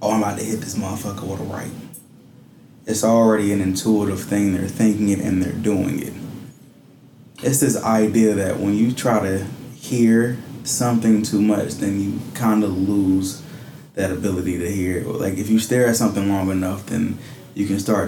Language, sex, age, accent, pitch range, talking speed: English, male, 20-39, American, 100-115 Hz, 185 wpm